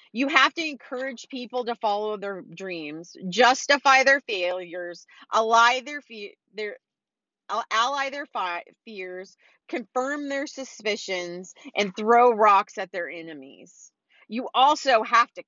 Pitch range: 210-265 Hz